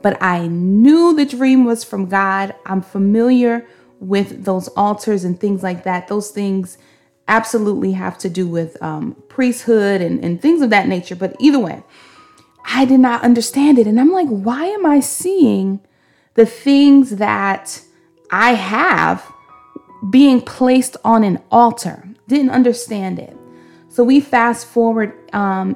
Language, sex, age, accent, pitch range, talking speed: English, female, 30-49, American, 195-240 Hz, 150 wpm